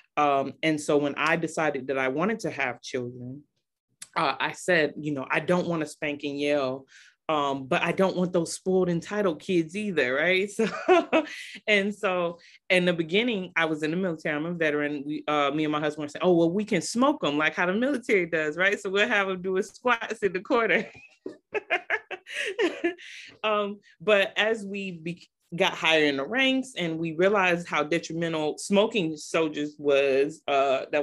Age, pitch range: 30-49, 145-190 Hz